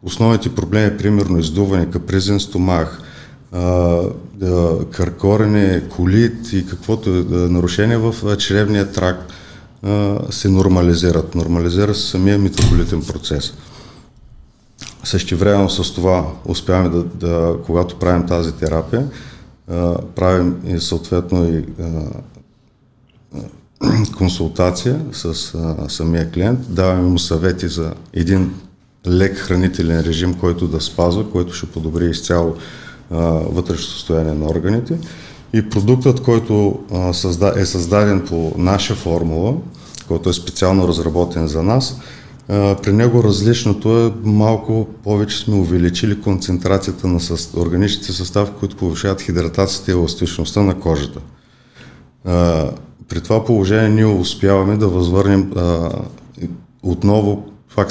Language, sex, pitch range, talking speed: Bulgarian, male, 85-105 Hz, 110 wpm